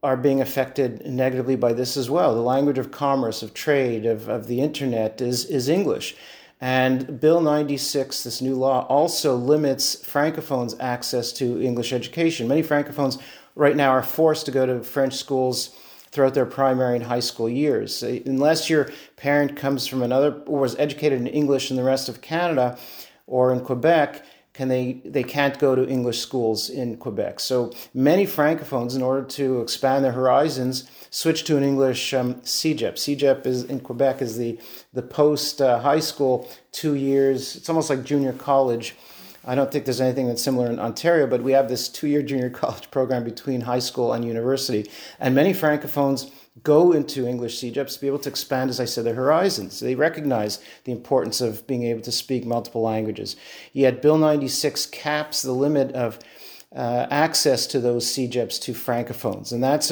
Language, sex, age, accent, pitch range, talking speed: English, male, 40-59, American, 125-145 Hz, 180 wpm